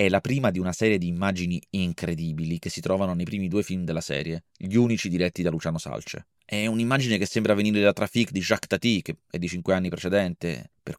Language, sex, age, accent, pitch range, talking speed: Italian, male, 30-49, native, 90-120 Hz, 225 wpm